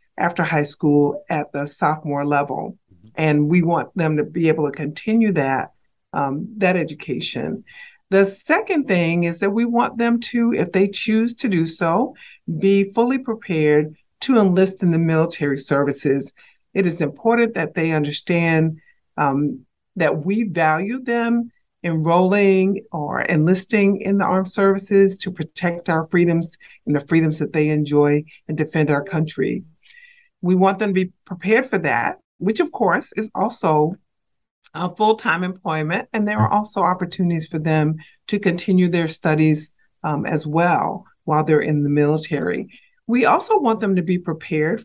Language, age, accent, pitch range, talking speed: English, 50-69, American, 155-205 Hz, 155 wpm